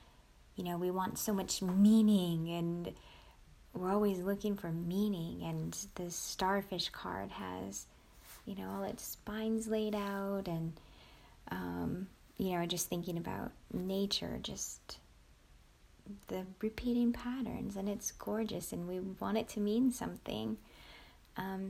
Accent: American